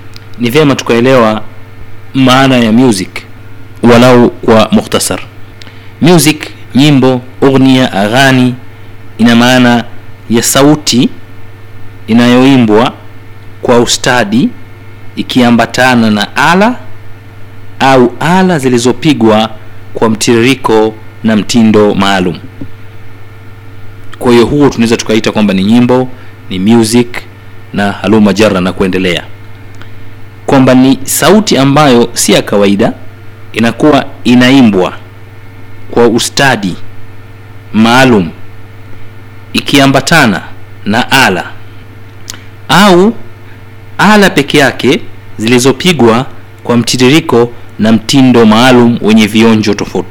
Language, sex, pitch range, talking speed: Swahili, male, 110-125 Hz, 90 wpm